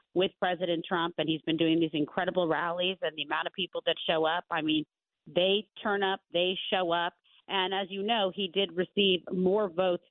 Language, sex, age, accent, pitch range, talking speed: English, female, 40-59, American, 160-185 Hz, 210 wpm